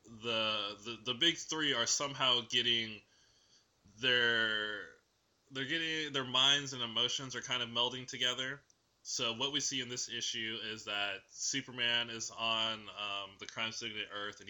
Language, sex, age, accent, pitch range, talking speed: English, male, 20-39, American, 110-130 Hz, 165 wpm